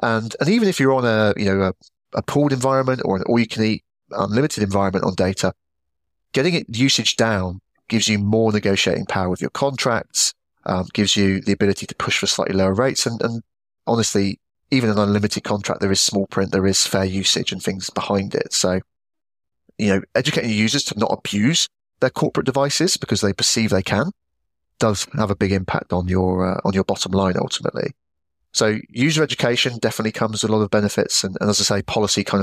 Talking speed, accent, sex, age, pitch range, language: 200 wpm, British, male, 30-49, 95-115 Hz, English